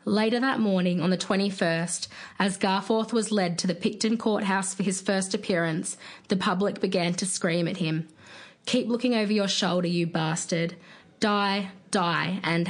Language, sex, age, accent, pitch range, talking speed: English, female, 20-39, Australian, 175-210 Hz, 165 wpm